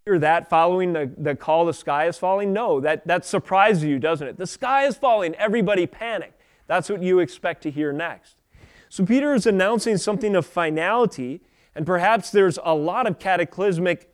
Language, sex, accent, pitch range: English, male, American, 160-210 Hz